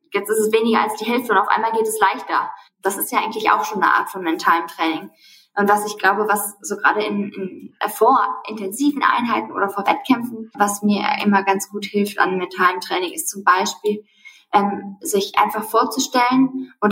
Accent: German